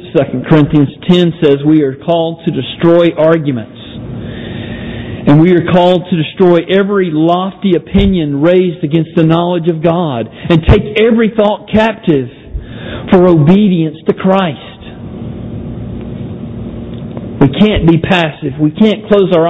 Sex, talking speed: male, 130 wpm